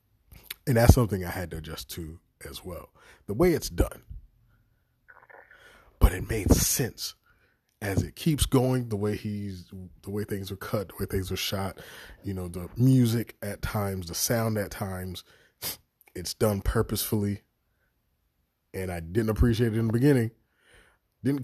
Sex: male